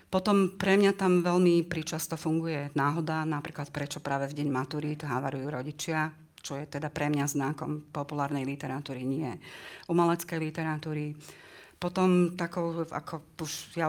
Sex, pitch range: female, 145-165 Hz